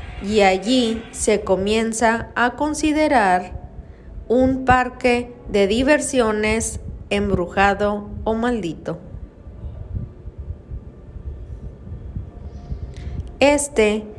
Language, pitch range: Spanish, 200-255 Hz